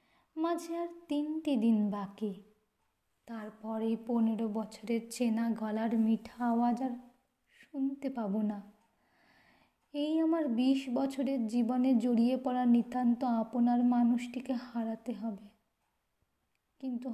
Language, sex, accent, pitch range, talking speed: Bengali, female, native, 215-255 Hz, 100 wpm